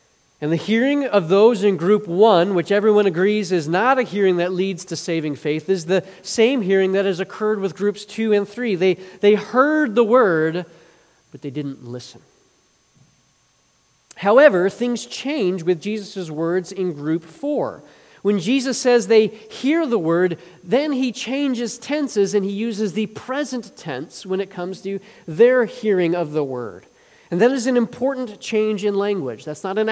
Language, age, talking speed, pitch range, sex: English, 40-59, 175 wpm, 175-225 Hz, male